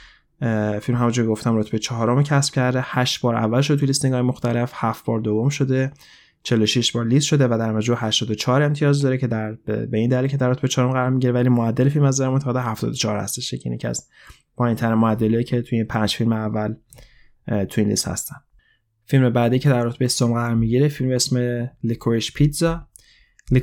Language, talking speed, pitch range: Persian, 190 wpm, 115-130 Hz